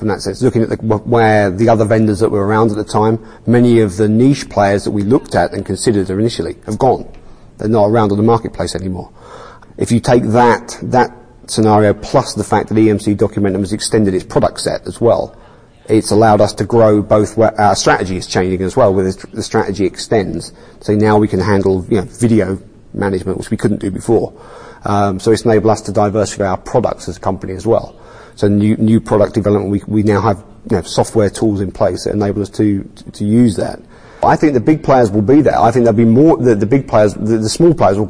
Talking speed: 225 wpm